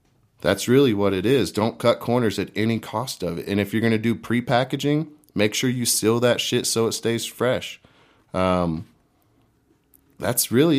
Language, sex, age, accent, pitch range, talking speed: English, male, 30-49, American, 100-120 Hz, 185 wpm